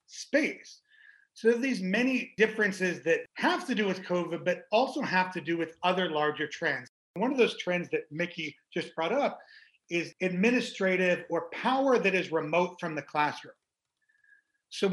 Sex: male